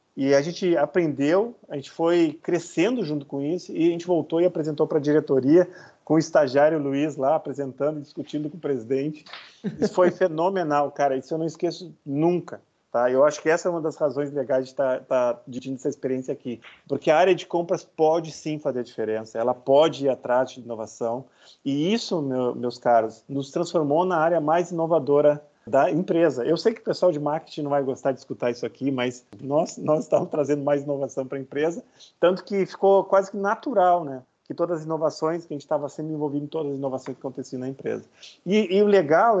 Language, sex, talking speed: Portuguese, male, 215 wpm